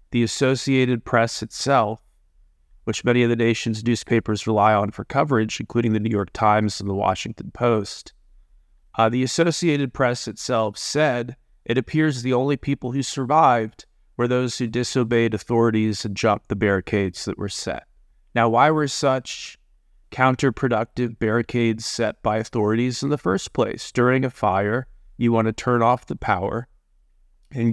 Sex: male